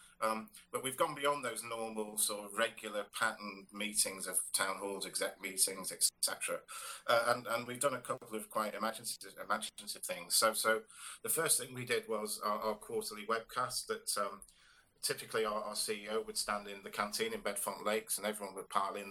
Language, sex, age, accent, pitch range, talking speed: English, male, 40-59, British, 105-125 Hz, 190 wpm